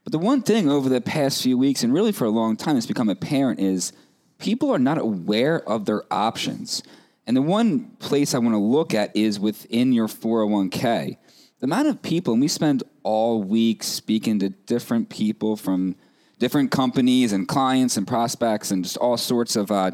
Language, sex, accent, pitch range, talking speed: English, male, American, 100-150 Hz, 195 wpm